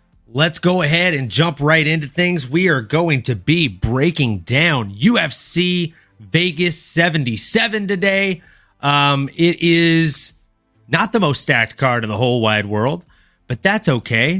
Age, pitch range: 30-49, 135-175 Hz